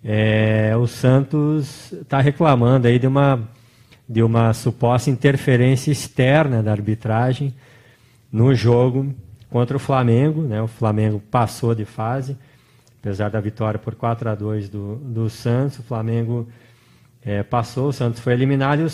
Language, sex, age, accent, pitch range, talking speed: Portuguese, male, 20-39, Brazilian, 115-140 Hz, 145 wpm